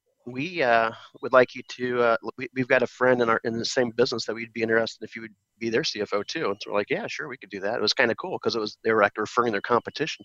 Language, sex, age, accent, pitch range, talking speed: English, male, 30-49, American, 110-125 Hz, 310 wpm